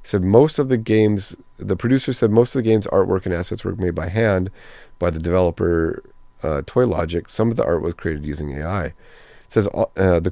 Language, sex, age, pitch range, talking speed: English, male, 30-49, 85-110 Hz, 210 wpm